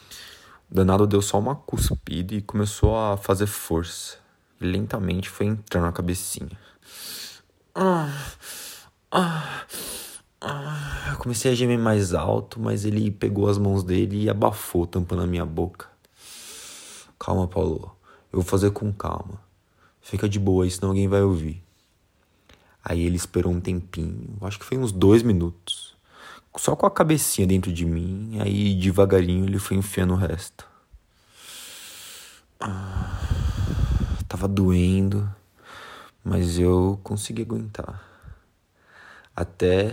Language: Portuguese